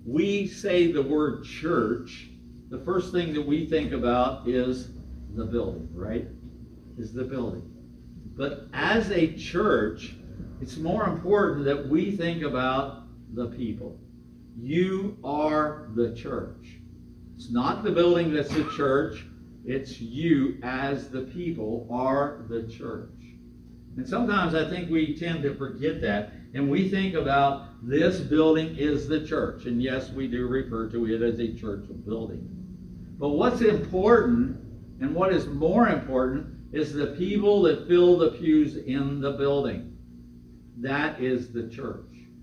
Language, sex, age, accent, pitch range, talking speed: English, male, 60-79, American, 120-160 Hz, 145 wpm